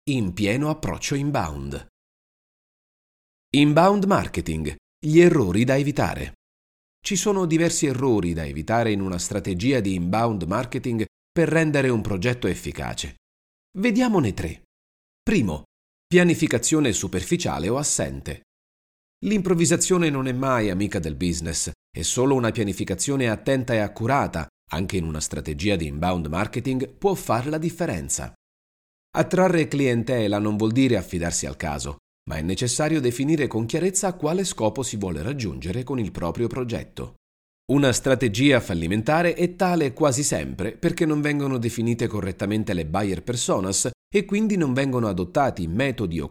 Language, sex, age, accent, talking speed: Italian, male, 40-59, native, 135 wpm